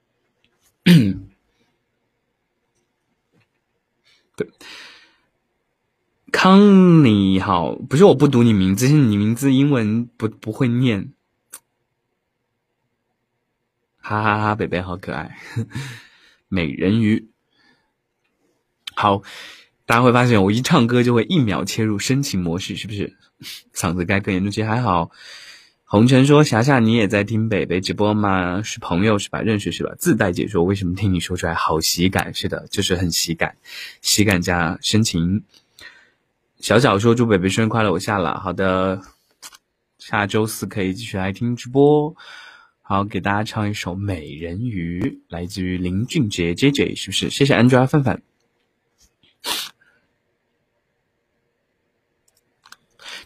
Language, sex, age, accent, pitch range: Chinese, male, 20-39, native, 95-120 Hz